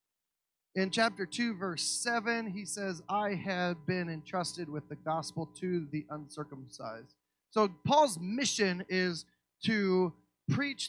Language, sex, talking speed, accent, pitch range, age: English, male, 125 wpm, American, 155-220 Hz, 30-49